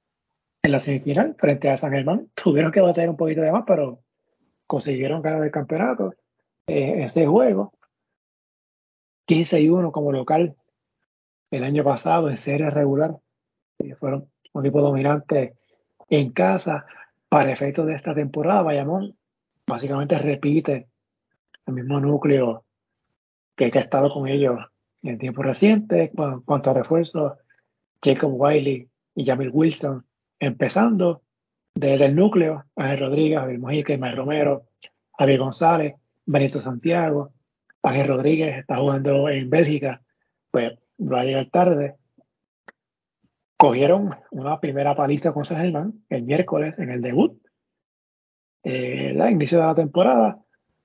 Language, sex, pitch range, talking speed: Spanish, male, 135-165 Hz, 135 wpm